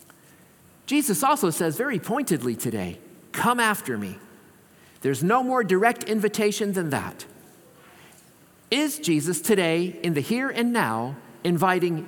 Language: English